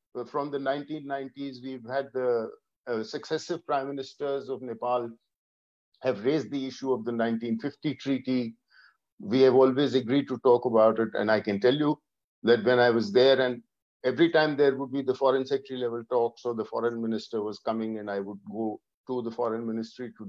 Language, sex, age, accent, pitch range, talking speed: English, male, 50-69, Indian, 115-155 Hz, 190 wpm